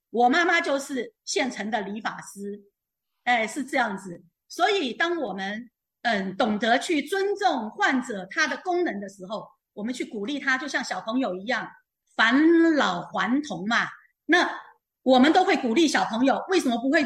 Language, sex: Chinese, female